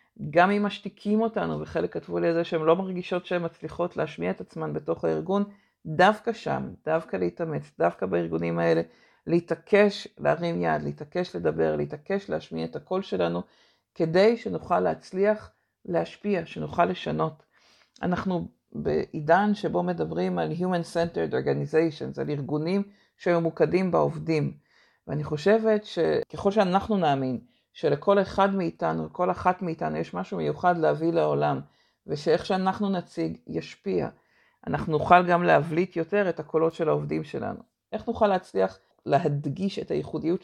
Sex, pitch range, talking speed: female, 135-200 Hz, 130 wpm